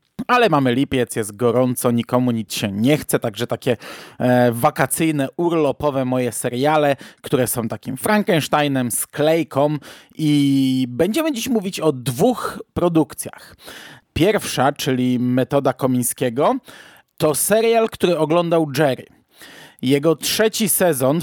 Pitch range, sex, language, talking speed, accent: 125-160 Hz, male, Polish, 120 wpm, native